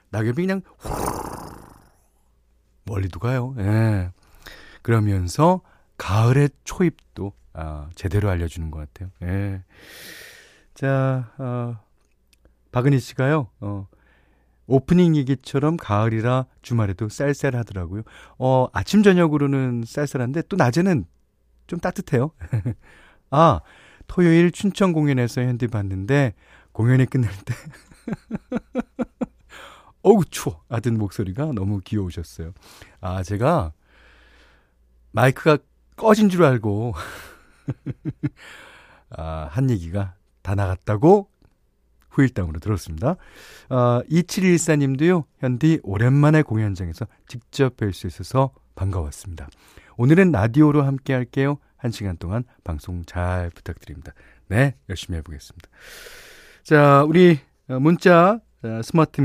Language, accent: Korean, native